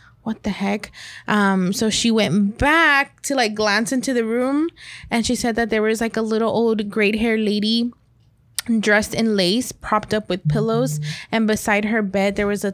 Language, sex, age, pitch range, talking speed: English, female, 20-39, 190-225 Hz, 195 wpm